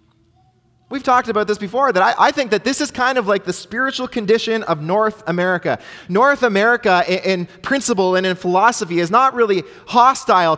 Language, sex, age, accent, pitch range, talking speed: English, male, 20-39, American, 150-225 Hz, 185 wpm